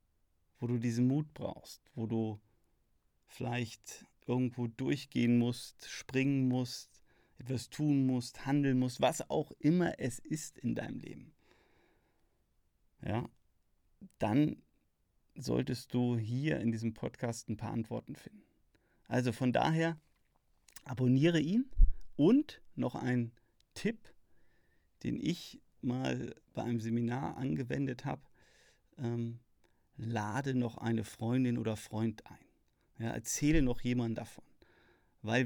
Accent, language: German, German